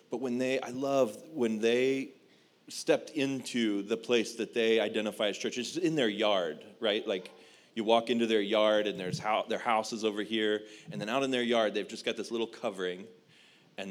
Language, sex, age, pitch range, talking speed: English, male, 30-49, 105-120 Hz, 210 wpm